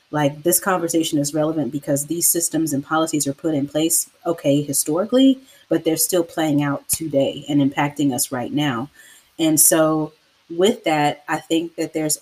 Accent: American